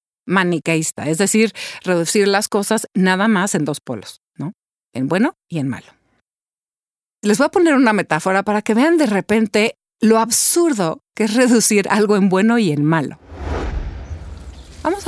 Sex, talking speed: female, 160 wpm